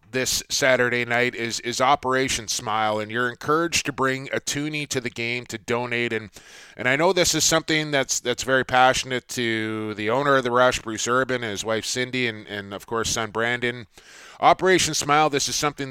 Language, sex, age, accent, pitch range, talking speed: English, male, 20-39, American, 120-145 Hz, 200 wpm